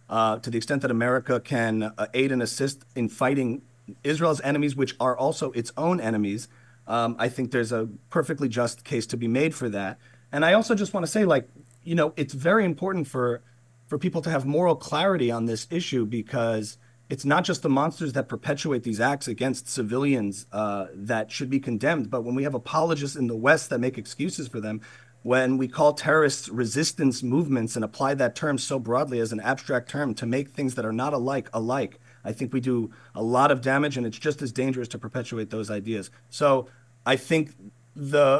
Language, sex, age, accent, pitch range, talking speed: English, male, 40-59, American, 115-140 Hz, 205 wpm